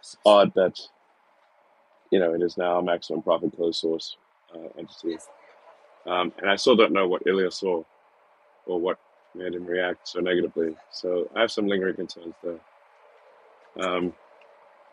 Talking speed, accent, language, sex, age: 160 wpm, American, English, male, 30-49